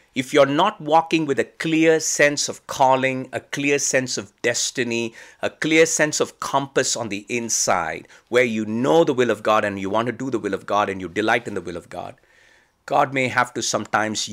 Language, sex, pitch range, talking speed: English, male, 105-145 Hz, 220 wpm